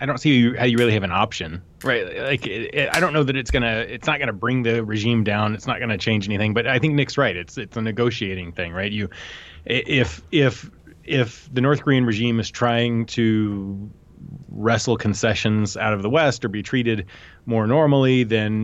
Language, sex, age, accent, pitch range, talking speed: English, male, 30-49, American, 105-145 Hz, 220 wpm